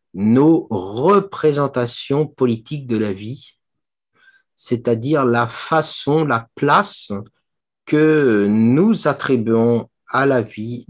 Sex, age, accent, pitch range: male, 50-69, French, 115-140 Hz